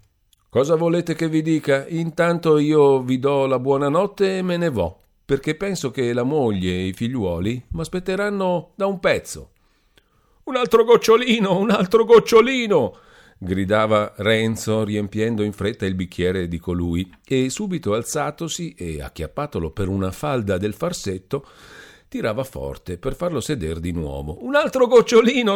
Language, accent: Italian, native